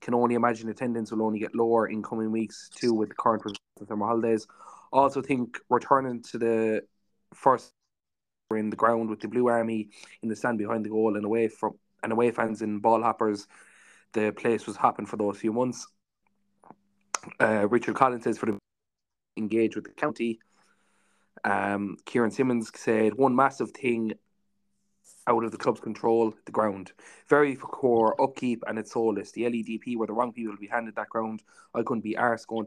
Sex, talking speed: male, 185 wpm